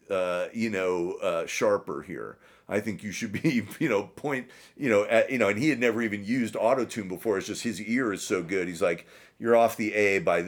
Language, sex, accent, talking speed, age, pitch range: English, male, American, 235 wpm, 40-59, 105-175 Hz